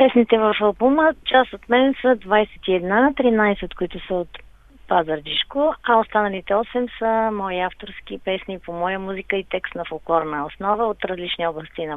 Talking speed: 165 wpm